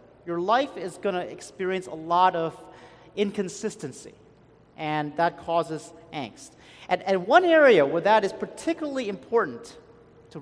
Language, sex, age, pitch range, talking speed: English, male, 30-49, 165-240 Hz, 130 wpm